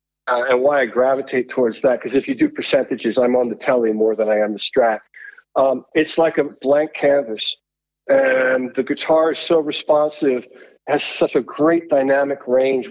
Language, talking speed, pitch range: English, 185 wpm, 115-140 Hz